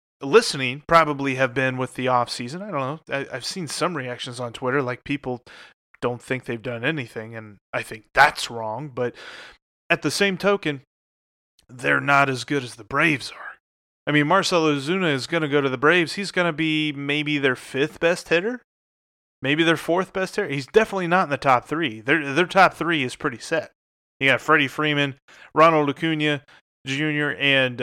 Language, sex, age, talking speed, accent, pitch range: English, male, 30-49, 190 wpm, American, 125-155 Hz